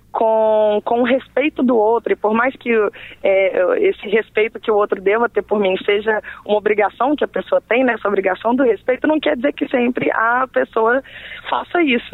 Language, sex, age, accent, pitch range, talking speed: Portuguese, female, 20-39, Brazilian, 210-265 Hz, 195 wpm